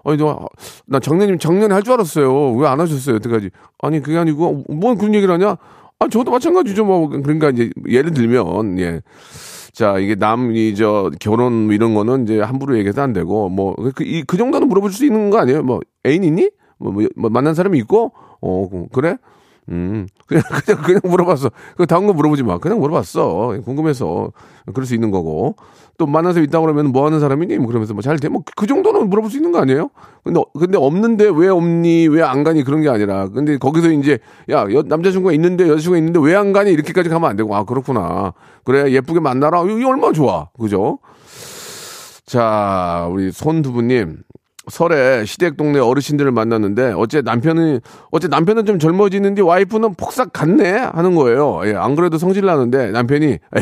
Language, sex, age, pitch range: Korean, male, 40-59, 115-180 Hz